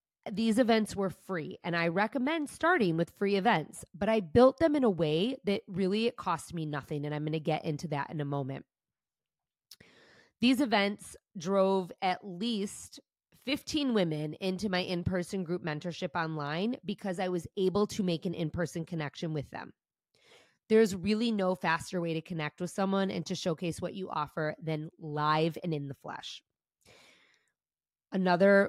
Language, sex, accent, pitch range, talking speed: English, female, American, 165-200 Hz, 165 wpm